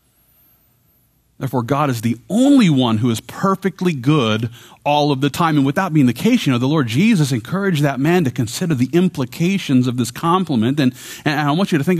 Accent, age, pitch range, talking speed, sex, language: American, 40-59, 115-160 Hz, 205 wpm, male, English